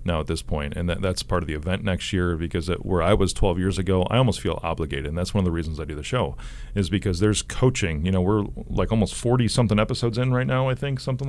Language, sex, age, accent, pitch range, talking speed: English, male, 40-59, American, 80-105 Hz, 280 wpm